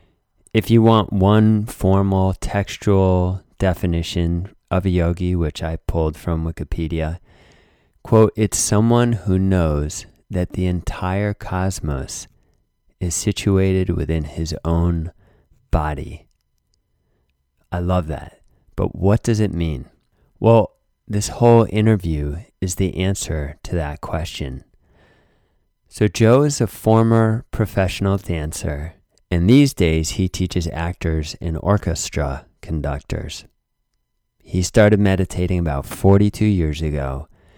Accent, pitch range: American, 80-100 Hz